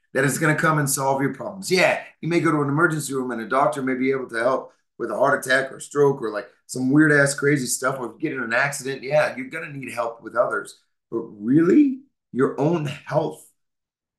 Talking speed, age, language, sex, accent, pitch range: 245 wpm, 30-49, English, male, American, 125-160 Hz